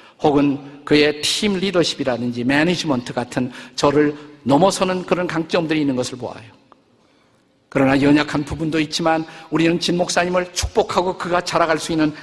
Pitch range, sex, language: 135-170 Hz, male, Korean